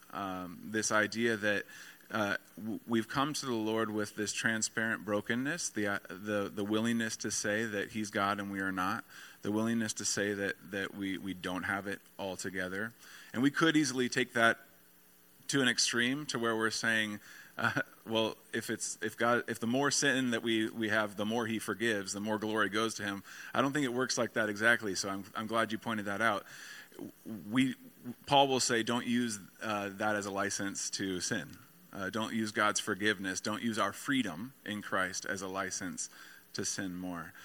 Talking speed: 200 wpm